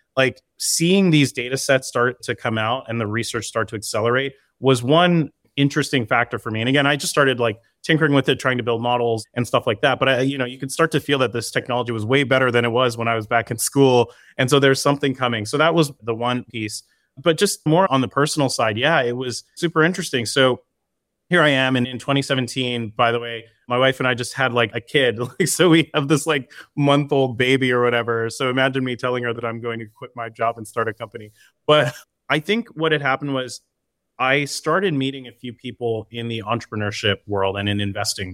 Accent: American